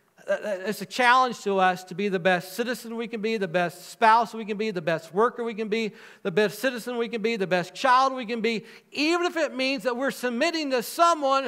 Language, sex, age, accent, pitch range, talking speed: English, male, 50-69, American, 190-260 Hz, 240 wpm